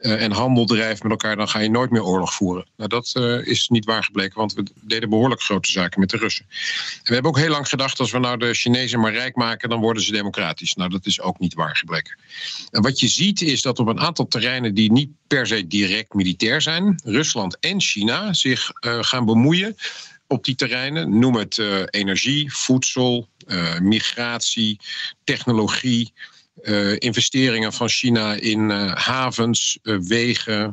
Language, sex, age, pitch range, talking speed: Dutch, male, 50-69, 110-130 Hz, 190 wpm